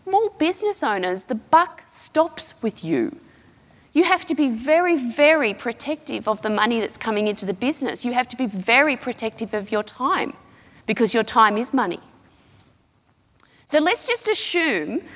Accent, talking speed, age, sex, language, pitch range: Australian, 160 wpm, 30-49, female, English, 205-305 Hz